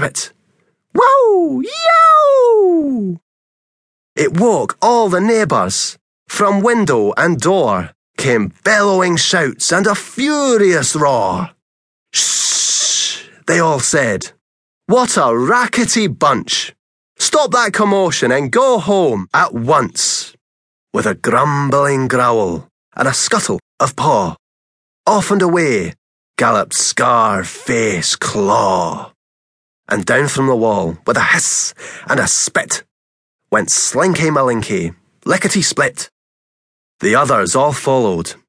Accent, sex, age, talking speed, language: British, male, 30-49, 105 wpm, English